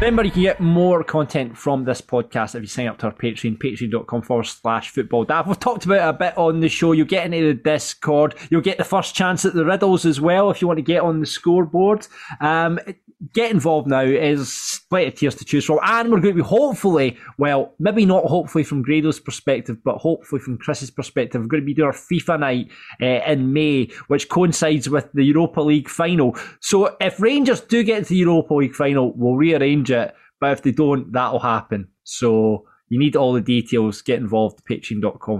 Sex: male